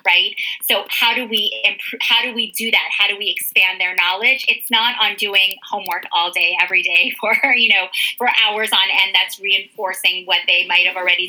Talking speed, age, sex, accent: 205 wpm, 30-49, female, American